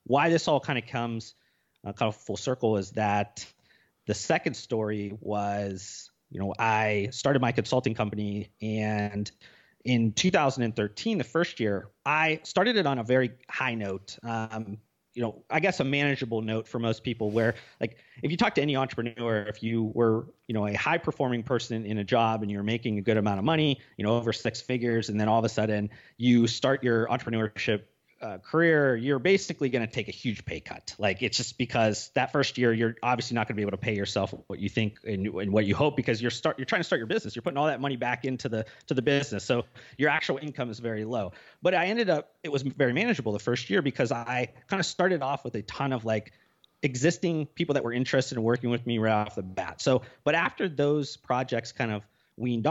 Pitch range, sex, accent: 110-135 Hz, male, American